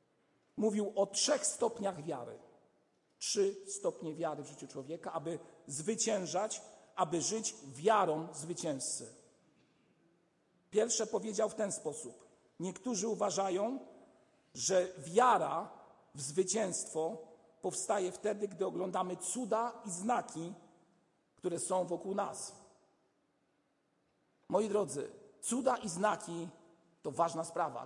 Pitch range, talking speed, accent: 160-215 Hz, 100 wpm, native